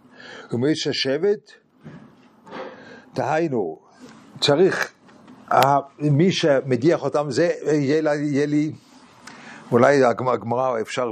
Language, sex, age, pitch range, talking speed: English, male, 50-69, 115-145 Hz, 70 wpm